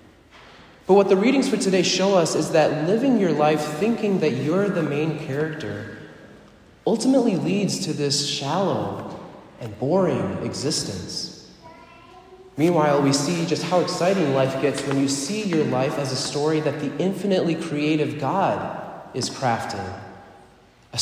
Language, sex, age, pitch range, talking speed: English, male, 30-49, 130-170 Hz, 145 wpm